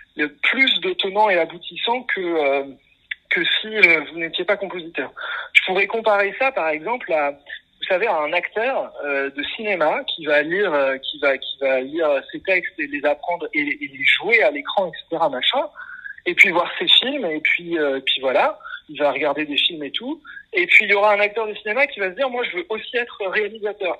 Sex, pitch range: male, 165-260 Hz